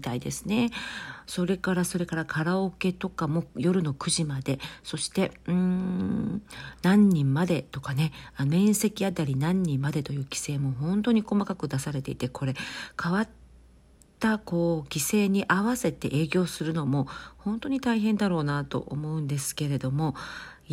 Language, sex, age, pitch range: Japanese, female, 40-59, 140-190 Hz